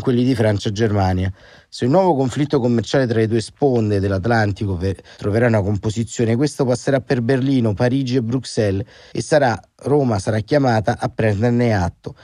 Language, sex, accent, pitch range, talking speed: Italian, male, native, 110-125 Hz, 160 wpm